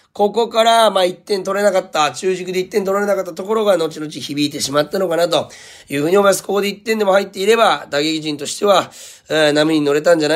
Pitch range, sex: 140-180 Hz, male